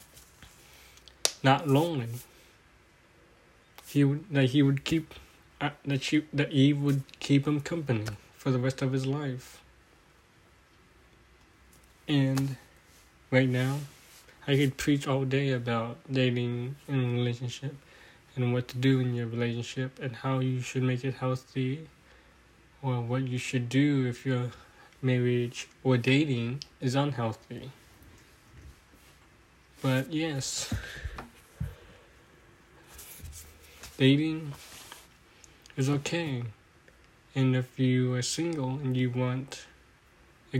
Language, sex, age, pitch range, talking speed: English, male, 20-39, 120-135 Hz, 110 wpm